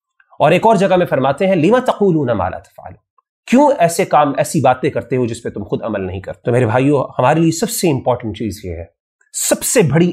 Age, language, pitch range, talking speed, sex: 30-49, Urdu, 110-165 Hz, 225 wpm, male